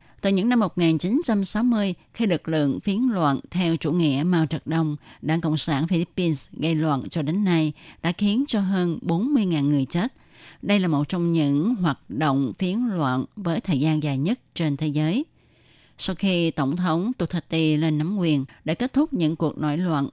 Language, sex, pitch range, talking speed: Vietnamese, female, 150-190 Hz, 190 wpm